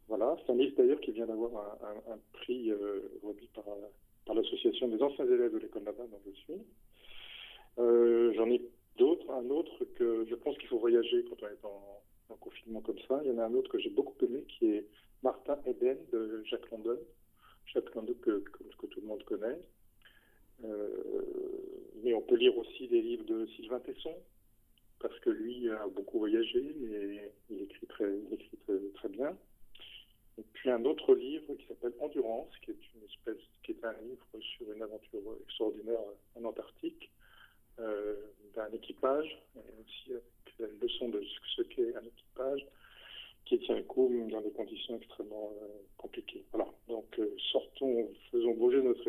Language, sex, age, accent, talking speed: French, male, 40-59, French, 180 wpm